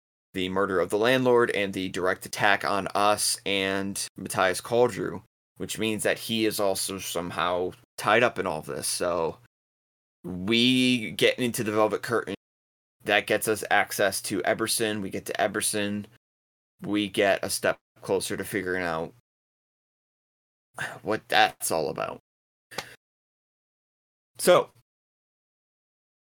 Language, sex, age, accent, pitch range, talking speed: English, male, 20-39, American, 90-110 Hz, 130 wpm